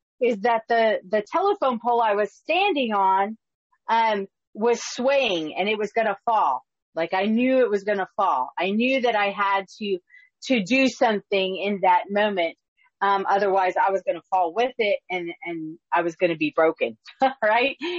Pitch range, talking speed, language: 195-255 Hz, 190 wpm, English